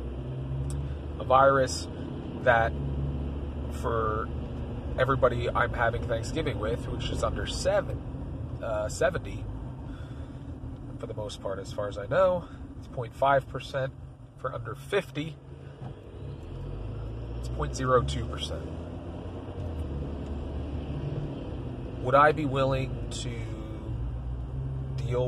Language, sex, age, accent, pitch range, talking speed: English, male, 30-49, American, 85-130 Hz, 85 wpm